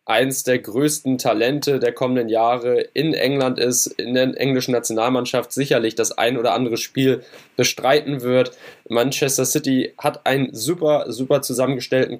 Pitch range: 125-140 Hz